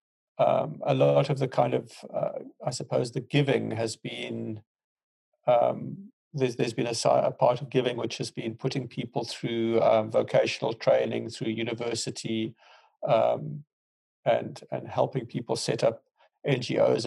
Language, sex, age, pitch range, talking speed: English, male, 50-69, 115-140 Hz, 150 wpm